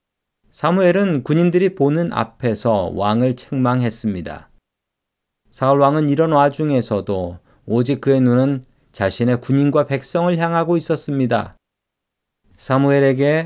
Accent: native